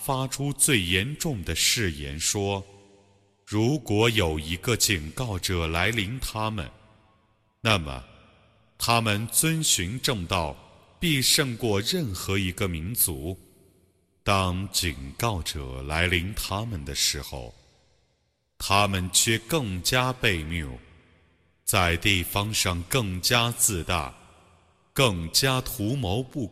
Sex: male